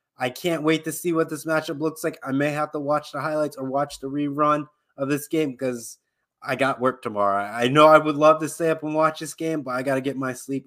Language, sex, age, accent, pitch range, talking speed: English, male, 20-39, American, 125-155 Hz, 270 wpm